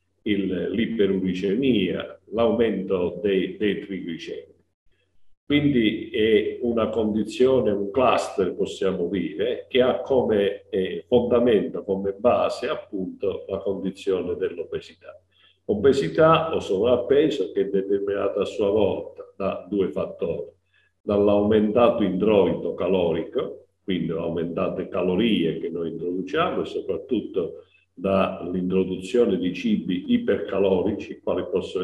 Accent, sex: native, male